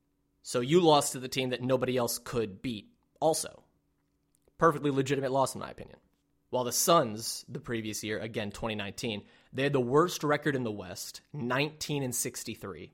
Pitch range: 120-150 Hz